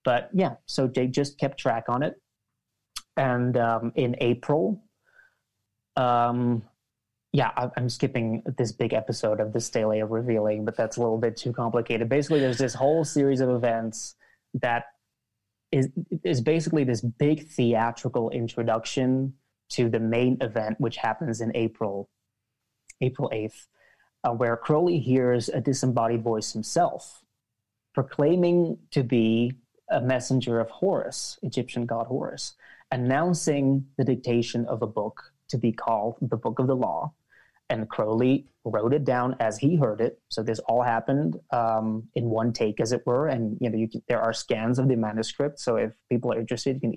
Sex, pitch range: male, 115-135 Hz